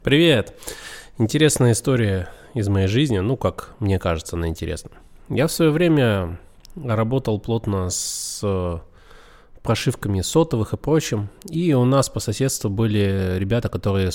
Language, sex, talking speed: Russian, male, 130 wpm